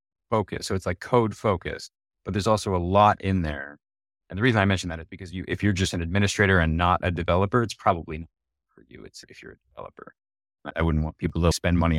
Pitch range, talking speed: 80-100 Hz, 240 wpm